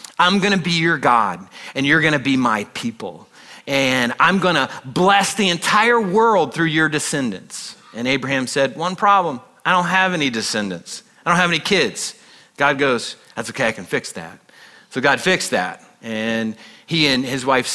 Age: 40-59